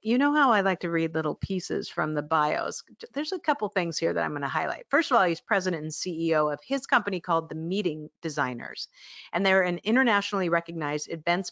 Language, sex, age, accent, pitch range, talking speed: English, female, 50-69, American, 165-230 Hz, 220 wpm